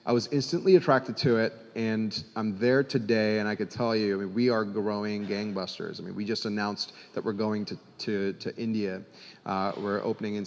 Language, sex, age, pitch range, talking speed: English, male, 30-49, 105-125 Hz, 210 wpm